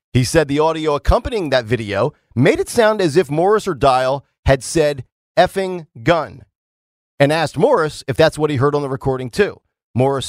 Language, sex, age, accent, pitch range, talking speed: English, male, 40-59, American, 125-175 Hz, 185 wpm